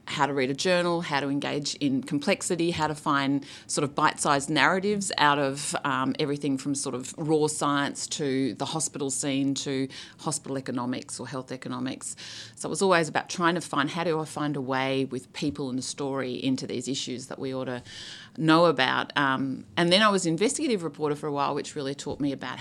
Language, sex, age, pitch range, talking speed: English, female, 30-49, 135-170 Hz, 210 wpm